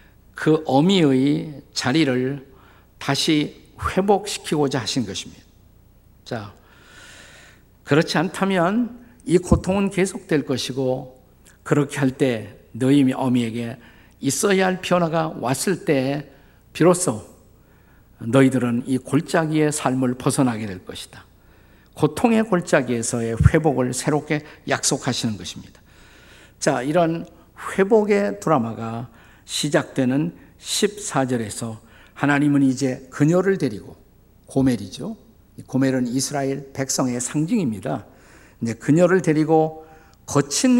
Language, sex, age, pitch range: Korean, male, 50-69, 120-160 Hz